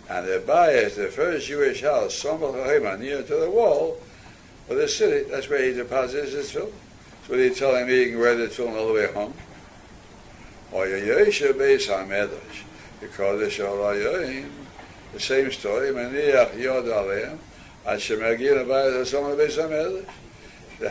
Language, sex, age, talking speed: English, male, 60-79, 160 wpm